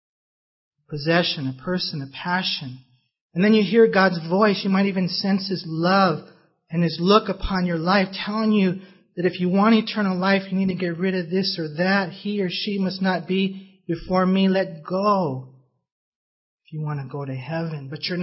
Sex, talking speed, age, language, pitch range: male, 195 wpm, 40-59, English, 155-195 Hz